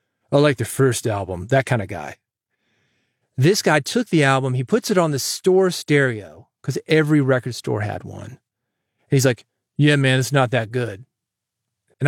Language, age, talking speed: English, 30-49, 185 wpm